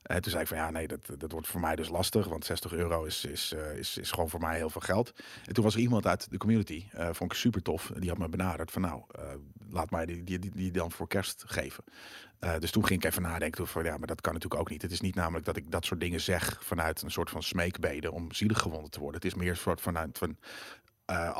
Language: Dutch